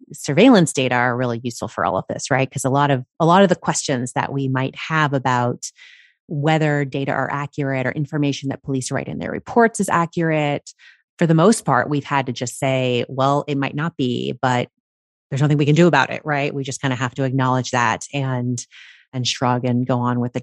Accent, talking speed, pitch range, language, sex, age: American, 225 wpm, 125-150 Hz, English, female, 30-49